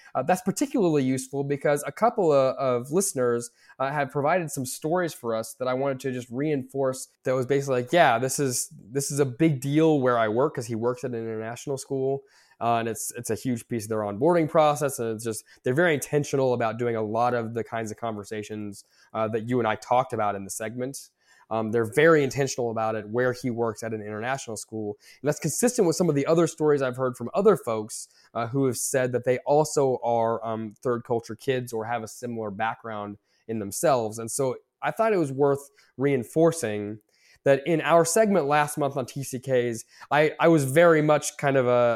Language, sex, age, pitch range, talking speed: English, male, 10-29, 115-145 Hz, 215 wpm